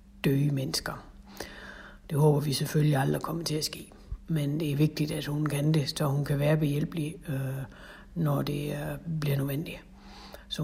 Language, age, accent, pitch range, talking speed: Danish, 60-79, native, 145-170 Hz, 165 wpm